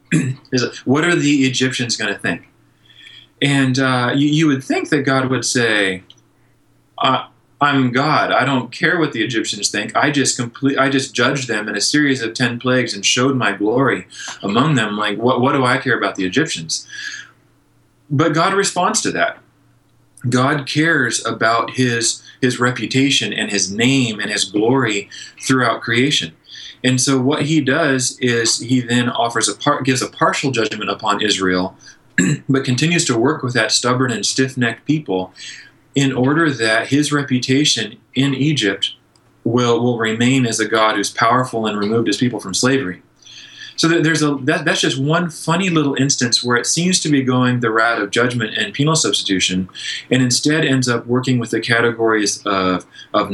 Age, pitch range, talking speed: 20-39, 115-140 Hz, 175 wpm